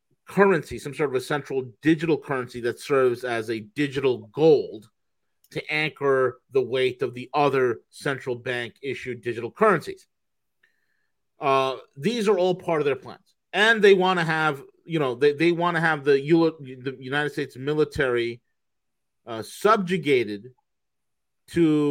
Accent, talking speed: American, 150 wpm